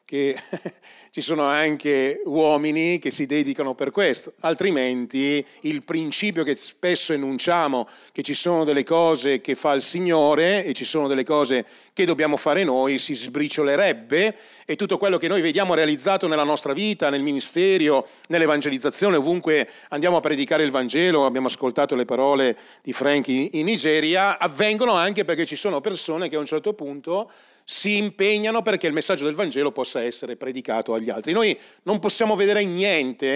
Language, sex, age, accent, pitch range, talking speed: Italian, male, 40-59, native, 140-185 Hz, 165 wpm